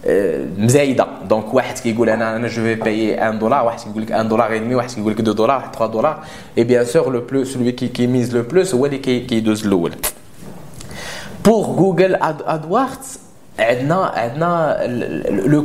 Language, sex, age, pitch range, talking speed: English, male, 20-39, 115-155 Hz, 190 wpm